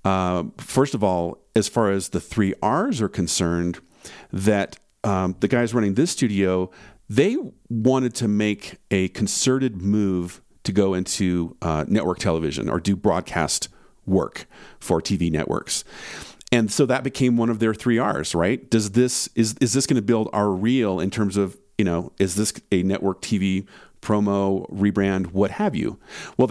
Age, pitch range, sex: 40-59, 95-115 Hz, male